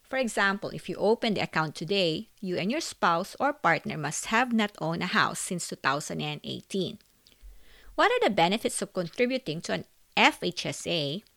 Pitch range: 180-255 Hz